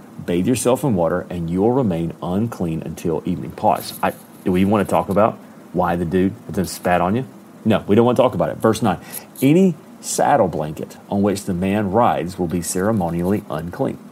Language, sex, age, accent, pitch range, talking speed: English, male, 40-59, American, 90-125 Hz, 190 wpm